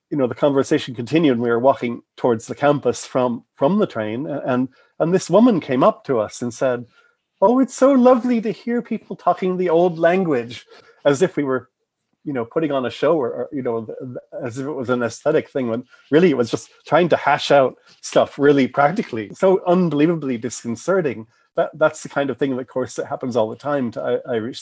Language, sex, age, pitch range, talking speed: English, male, 30-49, 115-150 Hz, 215 wpm